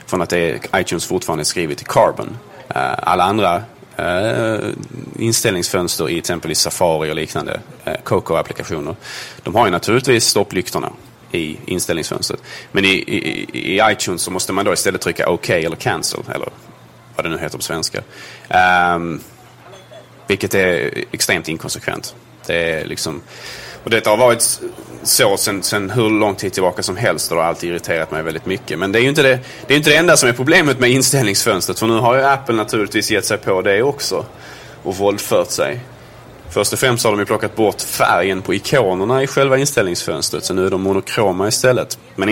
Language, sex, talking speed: Swedish, male, 180 wpm